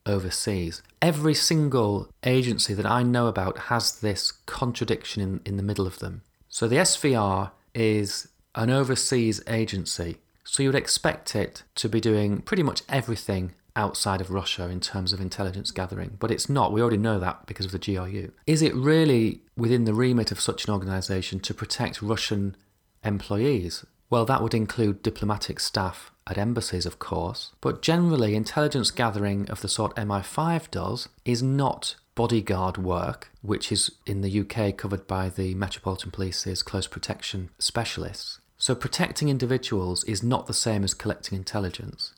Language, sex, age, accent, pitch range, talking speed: English, male, 30-49, British, 95-120 Hz, 160 wpm